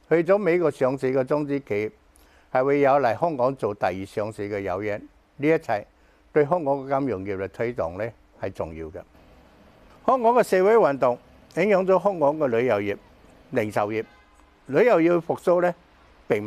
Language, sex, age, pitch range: Chinese, male, 60-79, 110-155 Hz